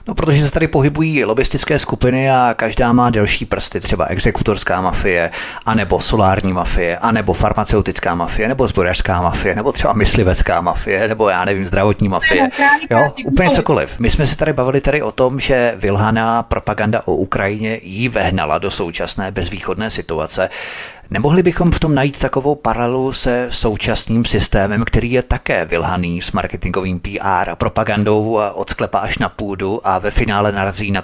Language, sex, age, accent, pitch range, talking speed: Czech, male, 30-49, native, 100-130 Hz, 160 wpm